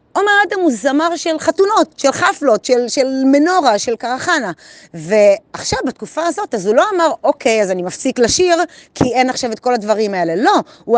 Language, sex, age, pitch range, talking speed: Hebrew, female, 30-49, 210-290 Hz, 185 wpm